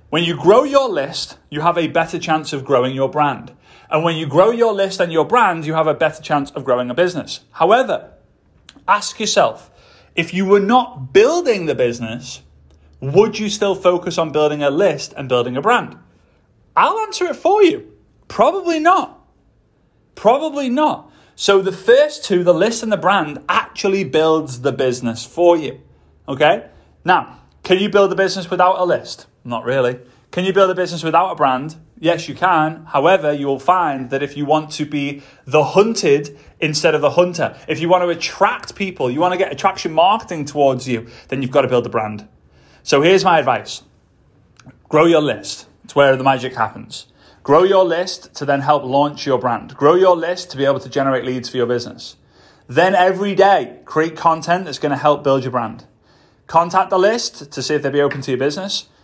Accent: British